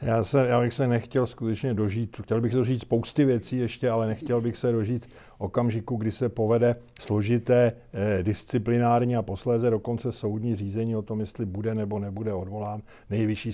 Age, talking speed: 50-69, 170 wpm